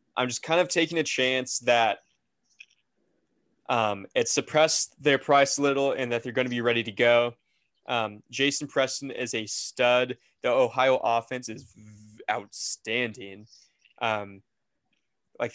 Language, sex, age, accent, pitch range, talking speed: English, male, 20-39, American, 115-135 Hz, 145 wpm